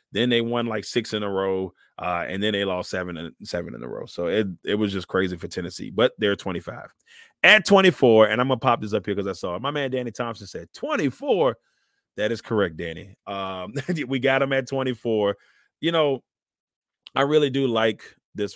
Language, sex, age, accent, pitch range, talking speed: English, male, 30-49, American, 105-130 Hz, 215 wpm